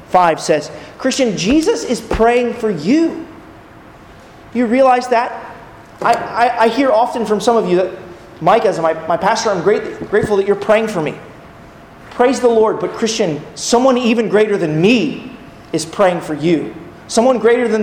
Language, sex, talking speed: English, male, 170 wpm